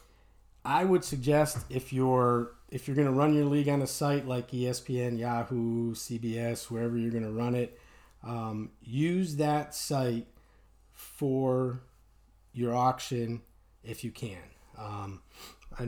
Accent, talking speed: American, 140 wpm